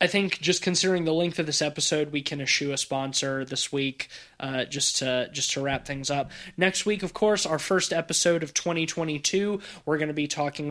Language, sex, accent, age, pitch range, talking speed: English, male, American, 20-39, 140-185 Hz, 215 wpm